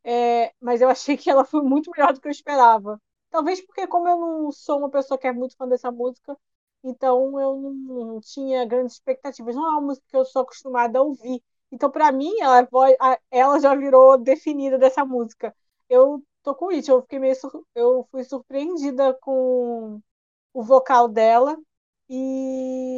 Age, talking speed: 20-39, 185 wpm